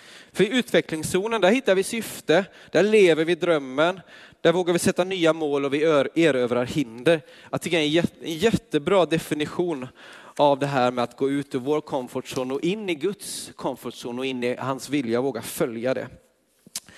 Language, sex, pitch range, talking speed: Swedish, male, 145-200 Hz, 180 wpm